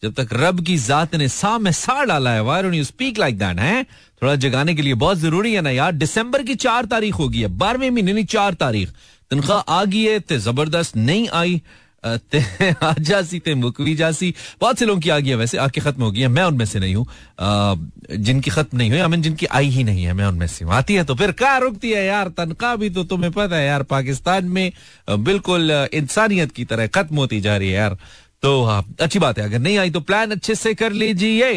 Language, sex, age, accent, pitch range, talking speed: Hindi, male, 40-59, native, 115-185 Hz, 190 wpm